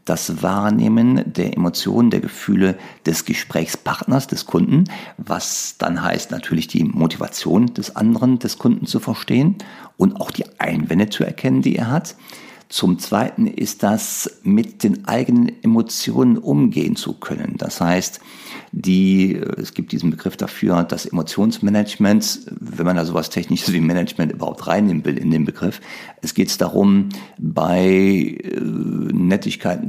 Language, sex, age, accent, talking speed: German, male, 50-69, German, 140 wpm